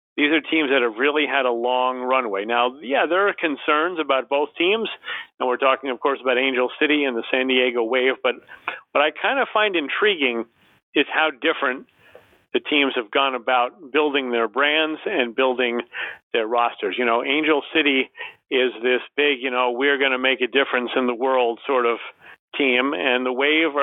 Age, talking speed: 40-59, 195 wpm